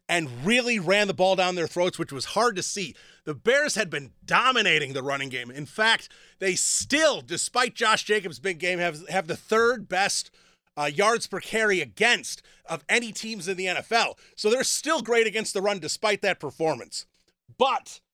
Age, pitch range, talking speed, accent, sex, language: 30-49, 180-225 Hz, 190 wpm, American, male, English